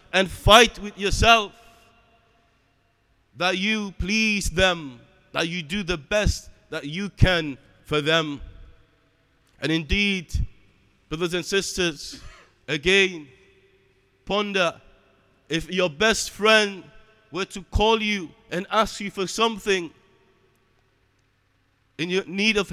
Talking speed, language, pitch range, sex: 110 wpm, English, 135-195 Hz, male